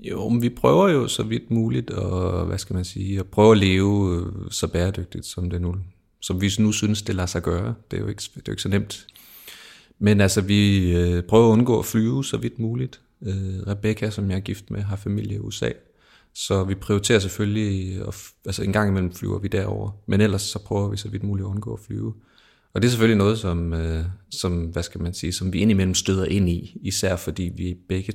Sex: male